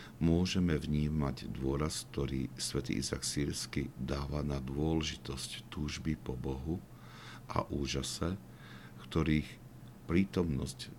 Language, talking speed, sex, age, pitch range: Slovak, 95 wpm, male, 60-79, 65-80 Hz